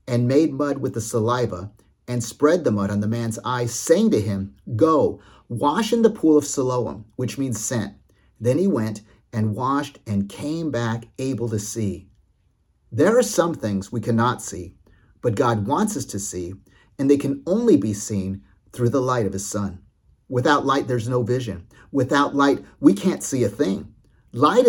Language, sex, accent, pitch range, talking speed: English, male, American, 105-145 Hz, 185 wpm